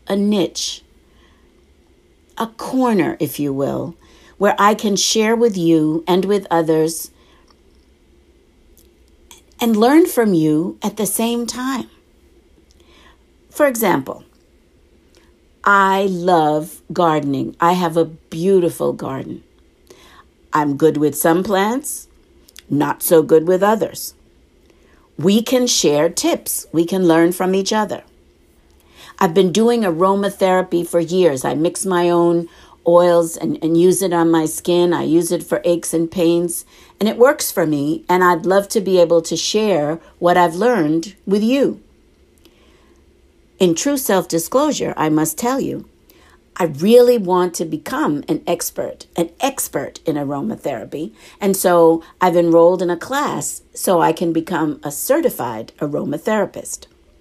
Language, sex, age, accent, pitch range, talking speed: English, female, 60-79, American, 160-205 Hz, 135 wpm